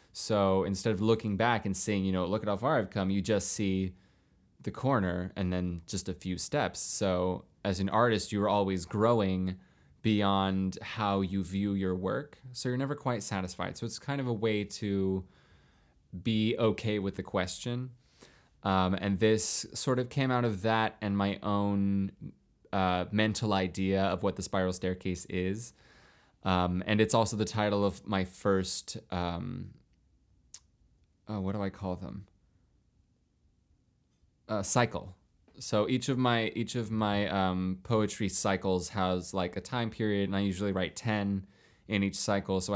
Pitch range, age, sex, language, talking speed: 95-110 Hz, 20-39, male, English, 165 wpm